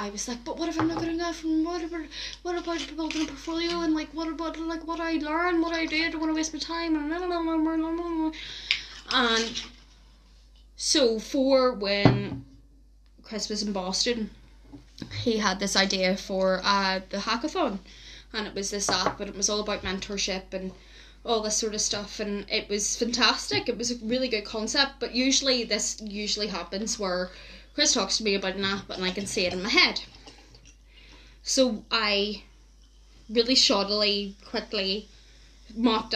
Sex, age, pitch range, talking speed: female, 10-29, 200-260 Hz, 180 wpm